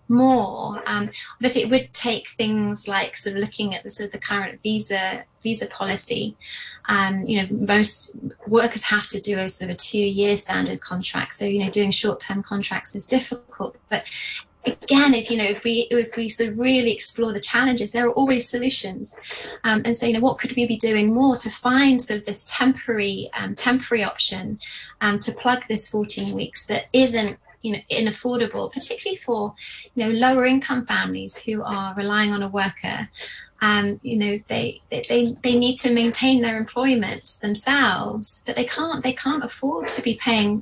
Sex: female